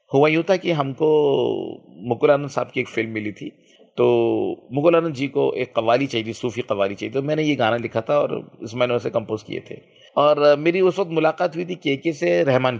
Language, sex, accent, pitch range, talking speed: Hindi, male, native, 115-155 Hz, 225 wpm